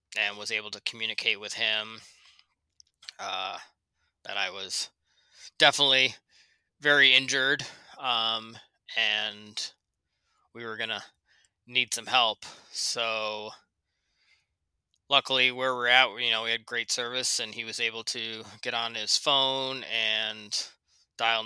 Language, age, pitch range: English, 20-39, 105-120 Hz